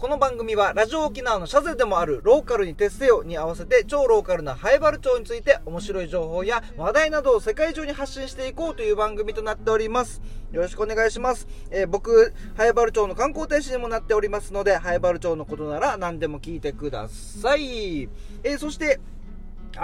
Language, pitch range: Japanese, 175-275 Hz